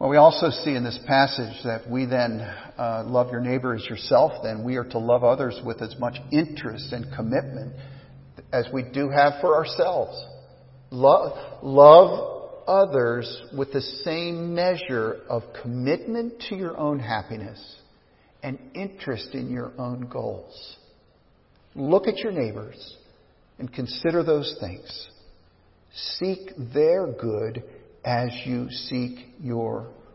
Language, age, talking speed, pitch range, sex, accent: English, 50-69, 135 wpm, 125-170 Hz, male, American